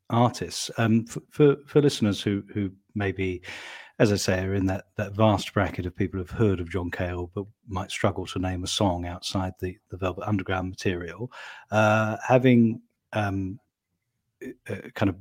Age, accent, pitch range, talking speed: 40-59, British, 95-105 Hz, 165 wpm